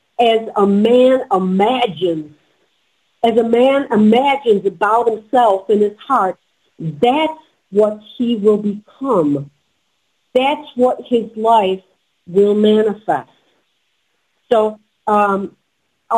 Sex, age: female, 50-69